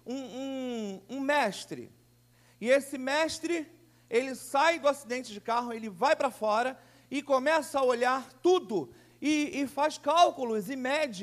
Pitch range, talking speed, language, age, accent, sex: 235-280 Hz, 150 wpm, Portuguese, 40-59, Brazilian, male